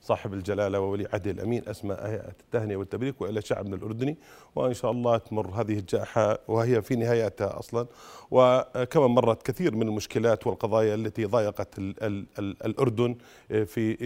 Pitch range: 110-150 Hz